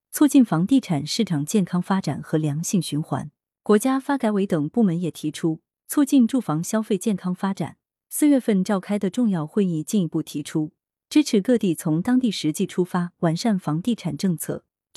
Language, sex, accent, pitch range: Chinese, female, native, 155-220 Hz